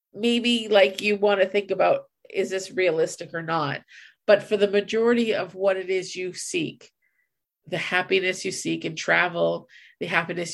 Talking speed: 170 wpm